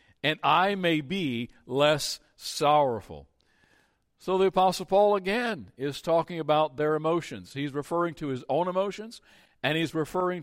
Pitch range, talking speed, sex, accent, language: 130-190 Hz, 145 wpm, male, American, English